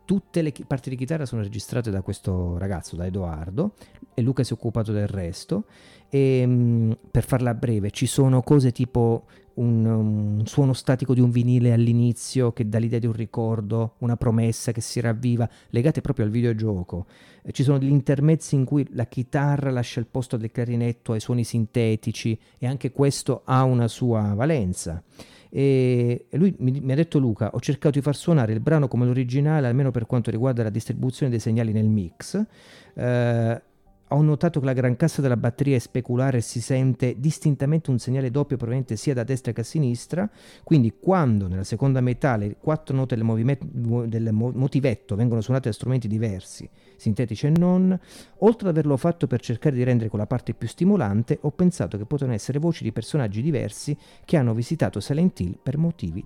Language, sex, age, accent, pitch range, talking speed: Italian, male, 40-59, native, 115-140 Hz, 180 wpm